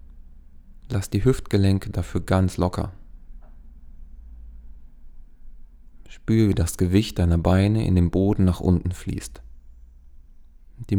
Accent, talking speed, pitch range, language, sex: German, 105 wpm, 80-105 Hz, German, male